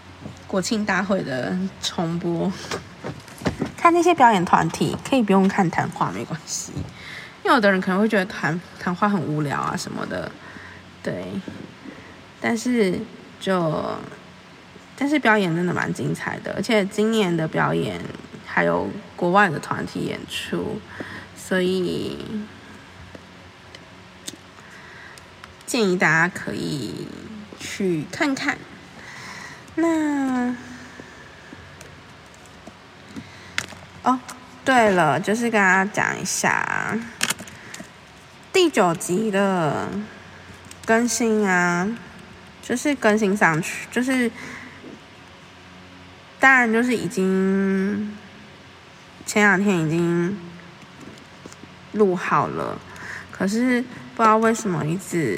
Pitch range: 175-225 Hz